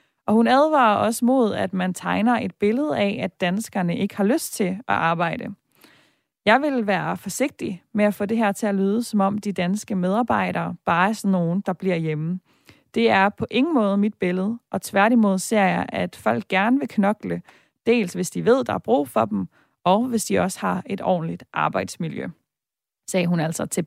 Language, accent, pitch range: Danish, native, 185-230 Hz